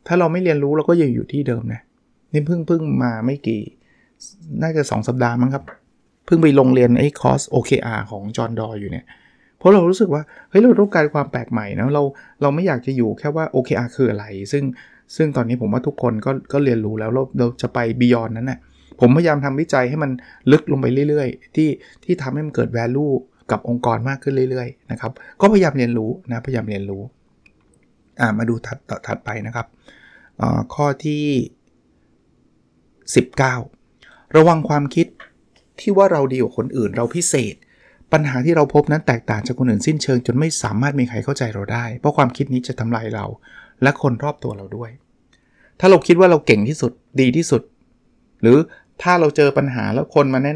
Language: Thai